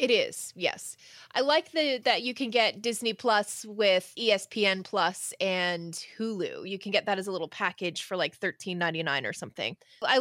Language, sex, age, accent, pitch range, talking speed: English, female, 20-39, American, 180-235 Hz, 195 wpm